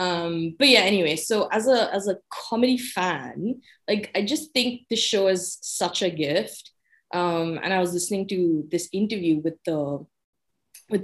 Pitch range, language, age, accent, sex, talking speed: 160-190 Hz, English, 20-39, Indian, female, 175 wpm